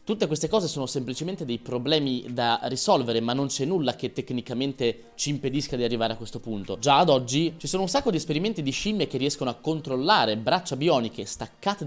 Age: 20-39